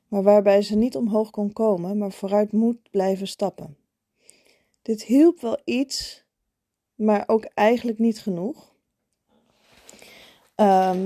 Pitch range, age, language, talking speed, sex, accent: 185-220 Hz, 20-39, Dutch, 120 wpm, female, Dutch